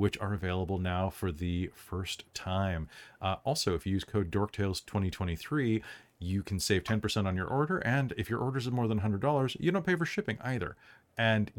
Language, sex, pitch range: English, male, 100-130 Hz